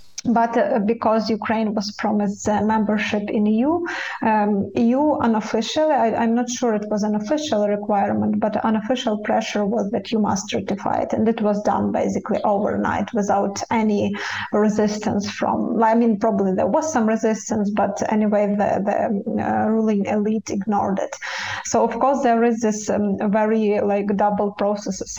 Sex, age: female, 20-39